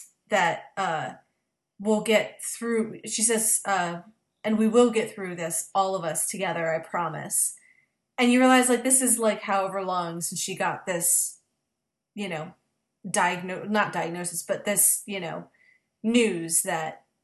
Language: English